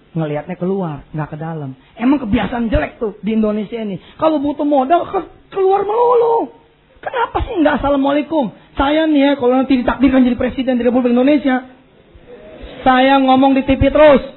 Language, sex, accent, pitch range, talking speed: English, male, Indonesian, 160-260 Hz, 160 wpm